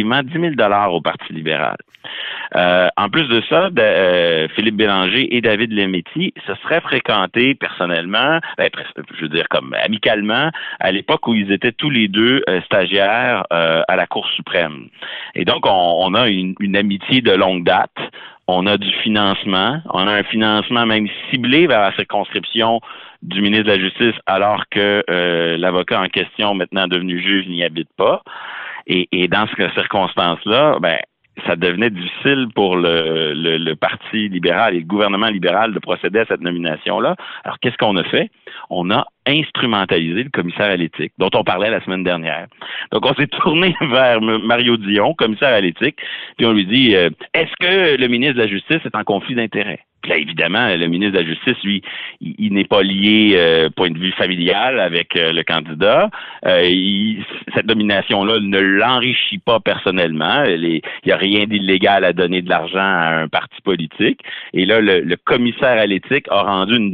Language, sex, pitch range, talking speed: French, male, 90-115 Hz, 185 wpm